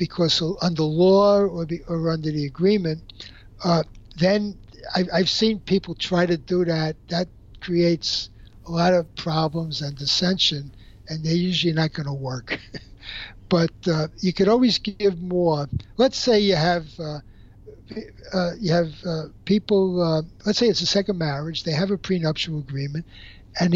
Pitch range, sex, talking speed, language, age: 155-190 Hz, male, 160 wpm, English, 60-79